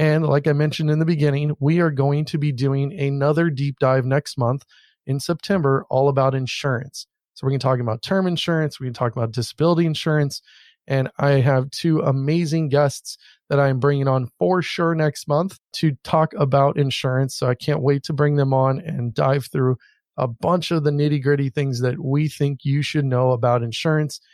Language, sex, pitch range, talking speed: English, male, 130-155 Hz, 200 wpm